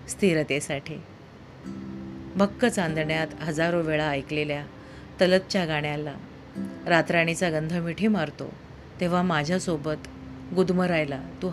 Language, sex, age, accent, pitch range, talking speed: Marathi, female, 40-59, native, 110-170 Hz, 85 wpm